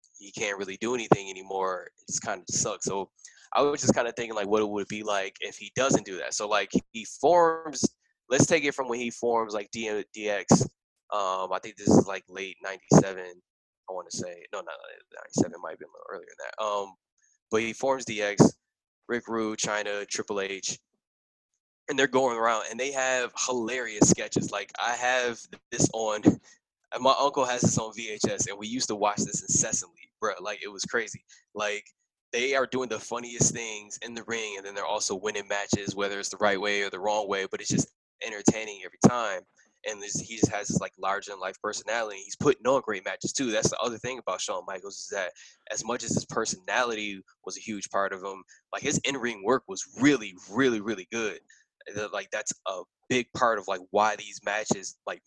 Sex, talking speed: male, 210 wpm